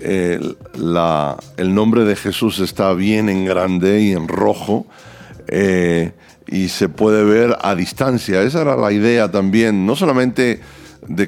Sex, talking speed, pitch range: male, 150 wpm, 95-115 Hz